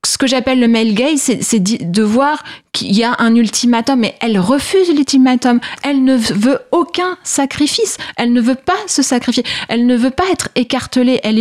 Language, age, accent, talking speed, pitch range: French, 30-49, French, 195 wpm, 205-270 Hz